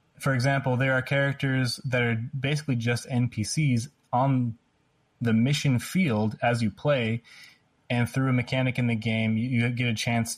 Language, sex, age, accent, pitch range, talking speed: English, male, 20-39, American, 110-140 Hz, 170 wpm